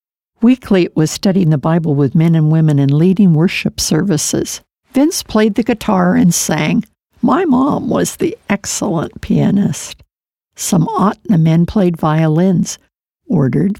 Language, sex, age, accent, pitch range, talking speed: English, female, 60-79, American, 170-220 Hz, 140 wpm